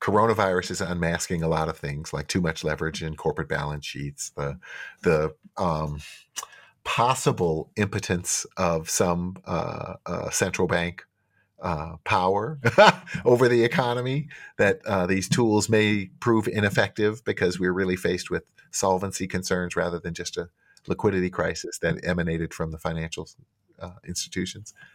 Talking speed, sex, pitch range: 135 wpm, male, 80-105 Hz